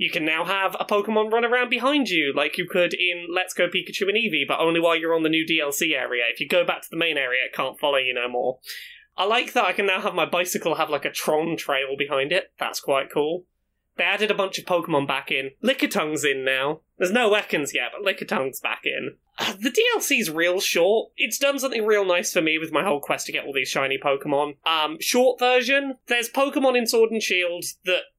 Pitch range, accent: 155-220 Hz, British